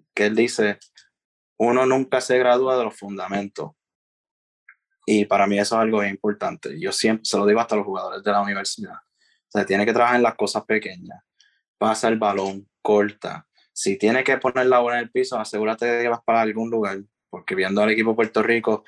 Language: Spanish